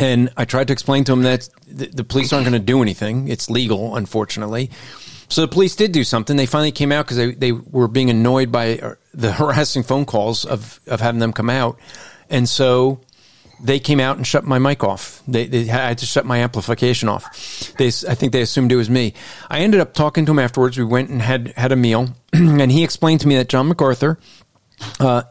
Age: 40-59